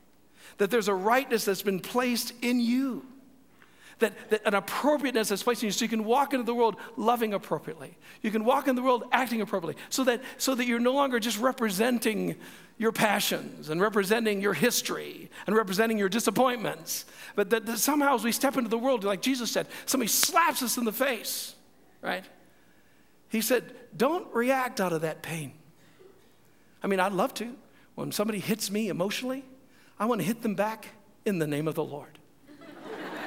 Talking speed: 185 wpm